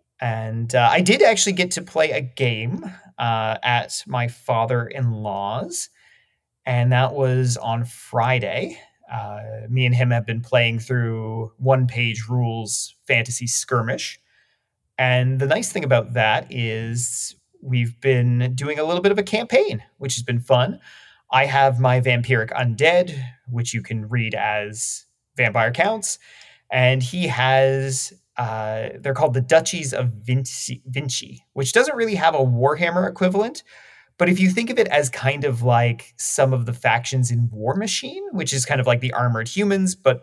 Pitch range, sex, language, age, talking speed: 115-135 Hz, male, English, 30-49, 165 wpm